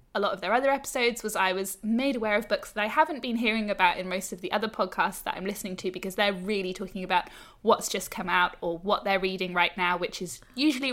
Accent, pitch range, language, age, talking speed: British, 185-230 Hz, English, 10-29, 260 wpm